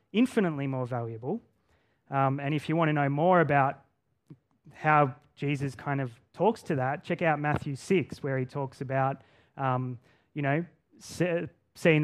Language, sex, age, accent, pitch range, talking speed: English, male, 20-39, Australian, 130-155 Hz, 155 wpm